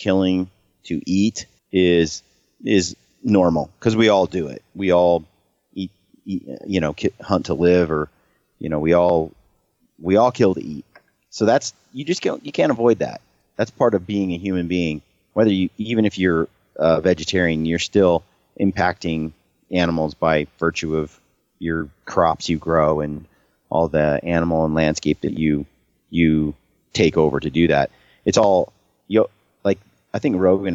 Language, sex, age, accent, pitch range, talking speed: English, male, 30-49, American, 80-100 Hz, 160 wpm